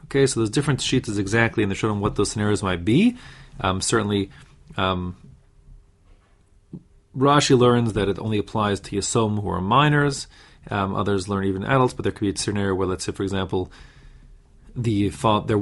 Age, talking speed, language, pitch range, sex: 30-49, 190 wpm, English, 100-130 Hz, male